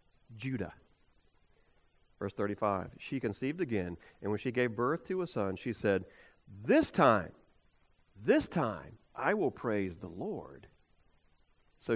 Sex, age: male, 40-59